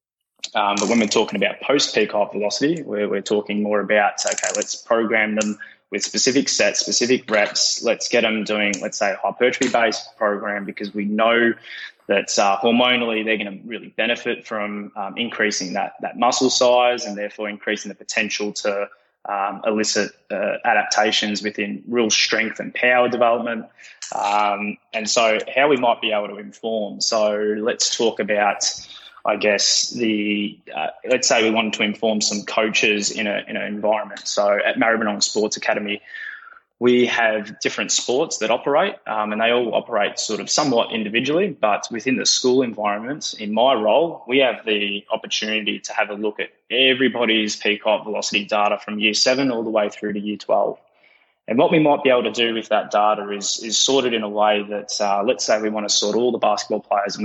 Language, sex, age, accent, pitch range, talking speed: English, male, 20-39, Australian, 105-115 Hz, 190 wpm